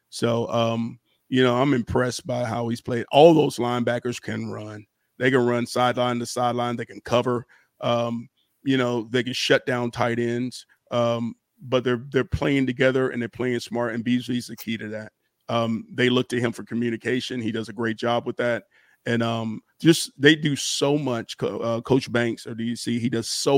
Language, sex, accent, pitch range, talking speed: English, male, American, 115-130 Hz, 200 wpm